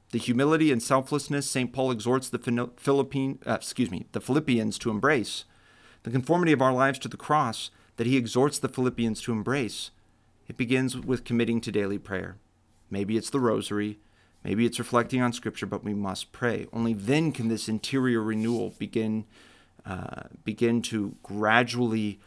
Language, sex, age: English, male, 40-59